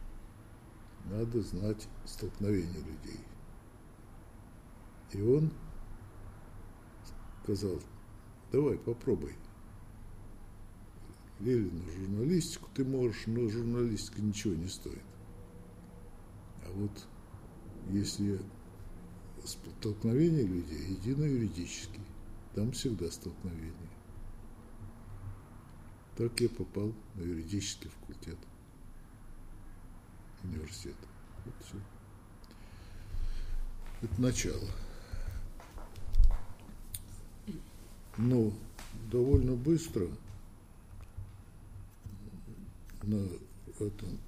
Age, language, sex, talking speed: 60-79, Russian, male, 60 wpm